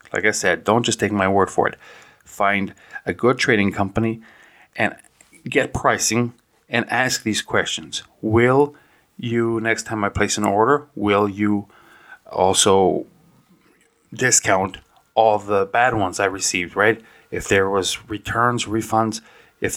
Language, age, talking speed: English, 30-49, 145 wpm